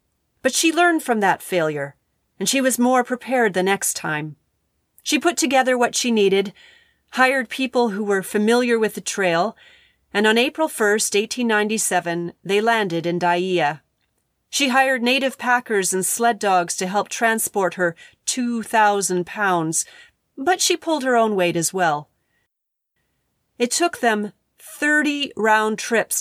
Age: 40-59